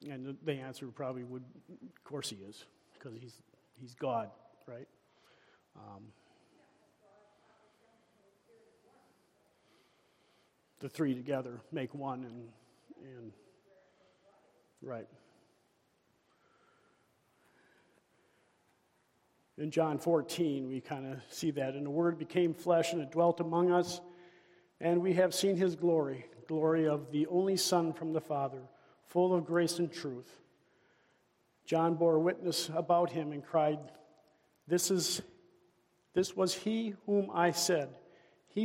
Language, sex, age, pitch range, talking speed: English, male, 50-69, 150-180 Hz, 120 wpm